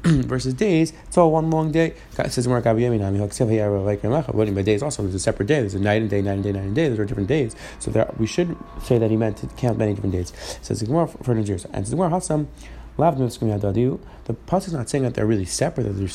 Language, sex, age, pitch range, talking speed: English, male, 30-49, 115-145 Hz, 210 wpm